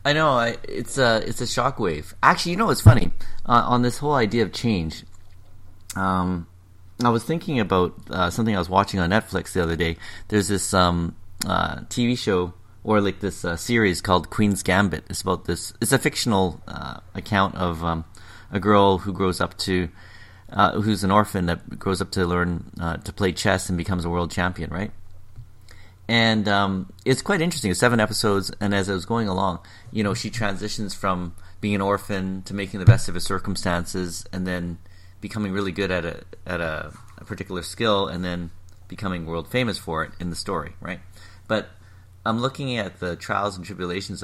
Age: 30-49